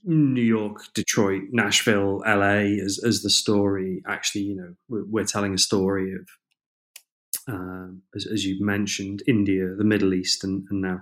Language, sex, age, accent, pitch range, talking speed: English, male, 30-49, British, 95-110 Hz, 165 wpm